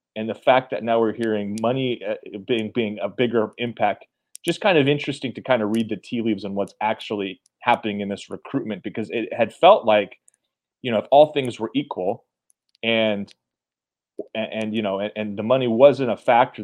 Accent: American